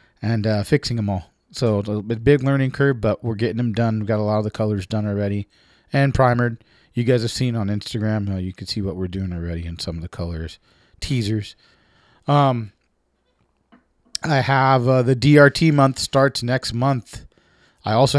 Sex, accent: male, American